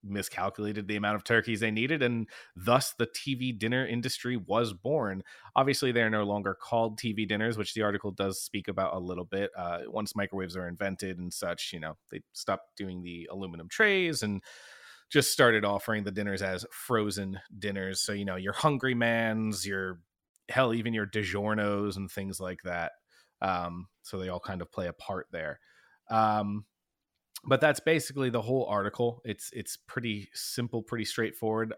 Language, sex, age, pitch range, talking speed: English, male, 30-49, 95-120 Hz, 175 wpm